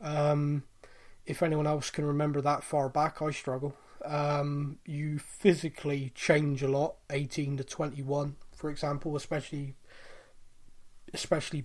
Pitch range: 145-160 Hz